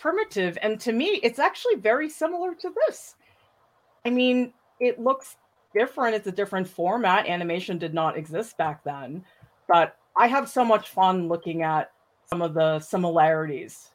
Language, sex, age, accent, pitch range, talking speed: English, female, 40-59, American, 170-255 Hz, 160 wpm